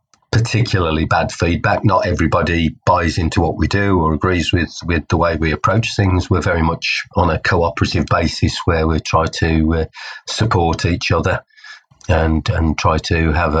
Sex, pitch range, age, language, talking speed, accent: male, 80-100 Hz, 40-59, English, 170 wpm, British